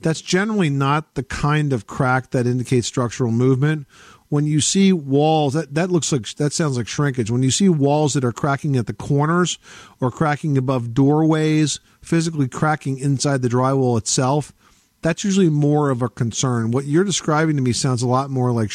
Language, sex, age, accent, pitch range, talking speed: English, male, 50-69, American, 120-150 Hz, 190 wpm